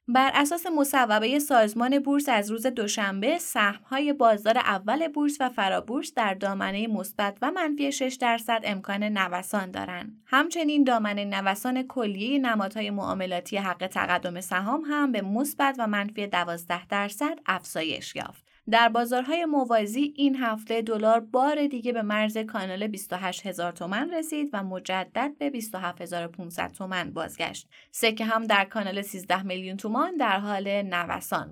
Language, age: Persian, 20-39